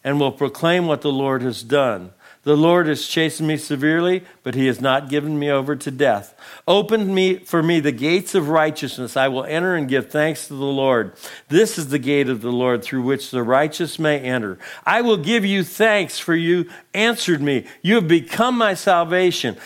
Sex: male